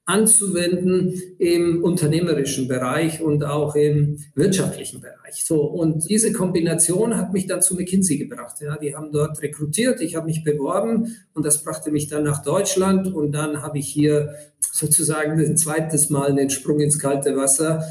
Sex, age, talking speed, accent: male, 50-69, 165 wpm, German